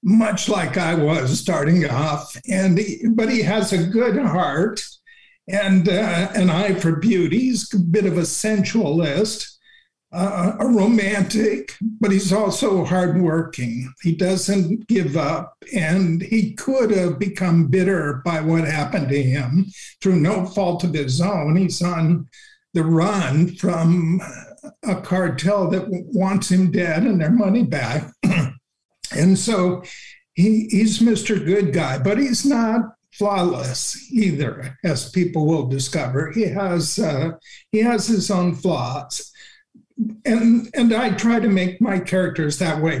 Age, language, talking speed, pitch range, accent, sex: 60-79, English, 145 wpm, 170-215 Hz, American, male